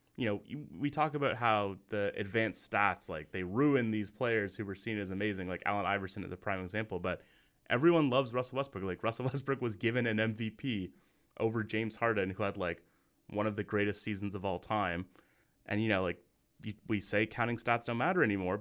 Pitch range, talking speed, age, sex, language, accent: 95-115 Hz, 205 wpm, 20-39, male, English, American